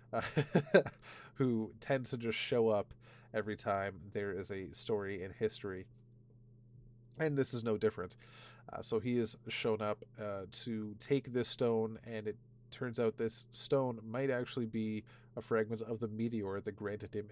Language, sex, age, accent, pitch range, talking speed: English, male, 30-49, American, 105-120 Hz, 165 wpm